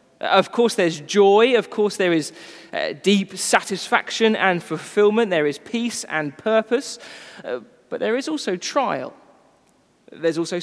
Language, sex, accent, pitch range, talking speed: English, male, British, 180-225 Hz, 145 wpm